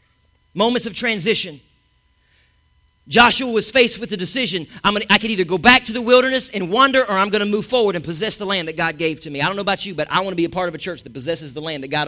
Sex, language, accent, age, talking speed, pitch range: male, English, American, 40-59, 275 wpm, 145-210 Hz